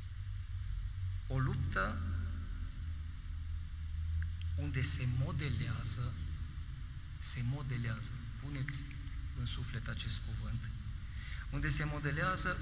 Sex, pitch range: male, 80-115 Hz